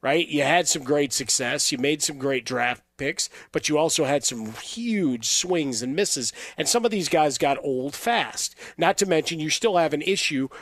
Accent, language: American, English